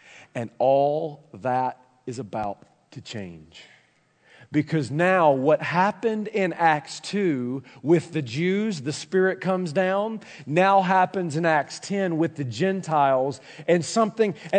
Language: English